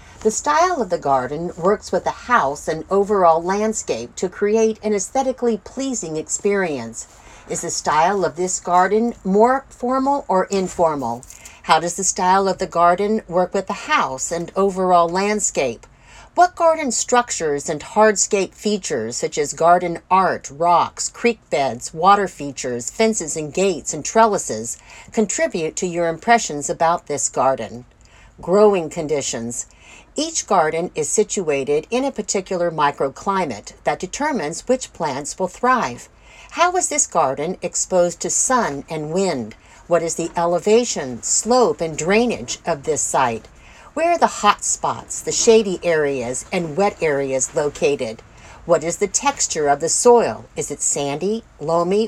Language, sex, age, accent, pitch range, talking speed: English, female, 50-69, American, 160-230 Hz, 145 wpm